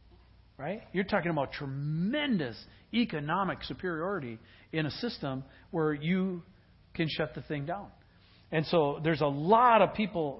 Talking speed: 140 wpm